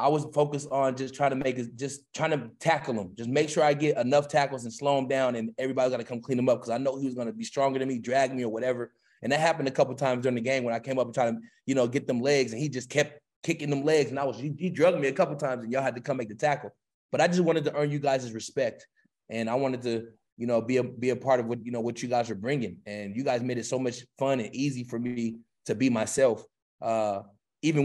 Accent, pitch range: American, 115-135 Hz